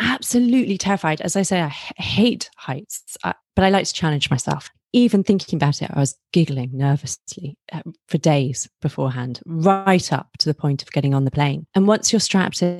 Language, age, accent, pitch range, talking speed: English, 30-49, British, 145-190 Hz, 185 wpm